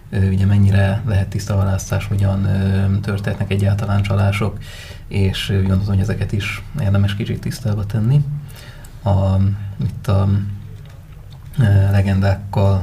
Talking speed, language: 100 wpm, Hungarian